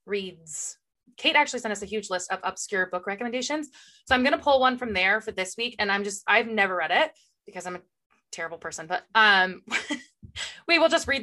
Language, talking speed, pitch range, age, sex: English, 220 wpm, 185-220 Hz, 20-39, female